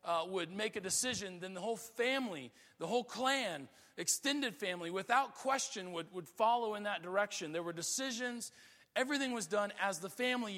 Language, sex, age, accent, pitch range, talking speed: English, male, 40-59, American, 185-245 Hz, 175 wpm